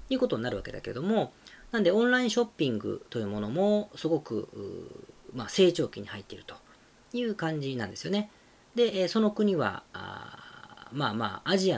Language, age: Japanese, 40-59